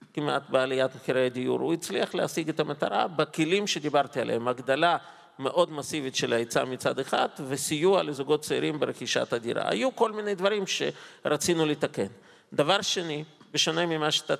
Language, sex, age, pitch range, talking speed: Hebrew, male, 50-69, 135-170 Hz, 145 wpm